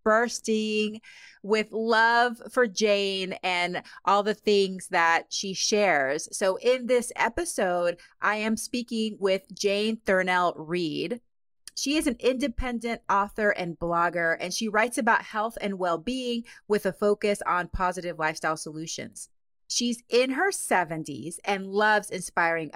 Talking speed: 130 wpm